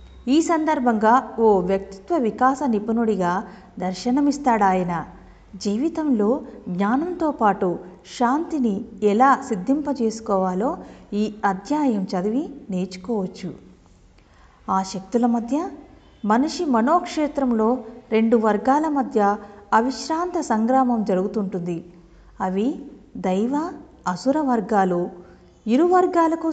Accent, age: native, 50-69